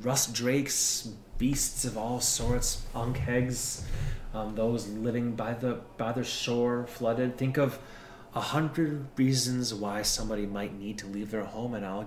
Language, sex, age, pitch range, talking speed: English, male, 30-49, 100-125 Hz, 155 wpm